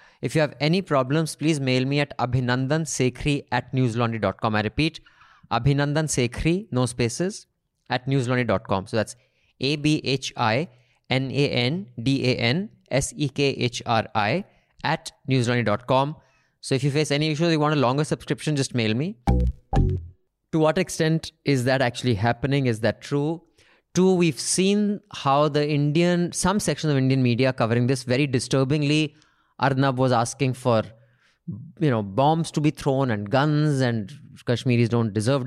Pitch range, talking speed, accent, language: 120-150 Hz, 135 wpm, Indian, English